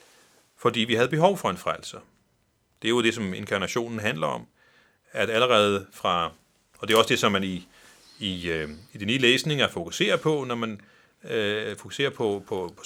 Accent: native